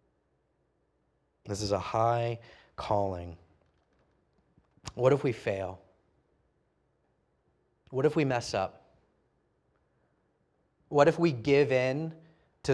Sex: male